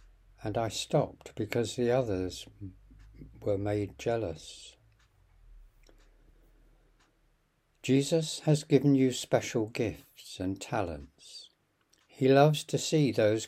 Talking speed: 100 wpm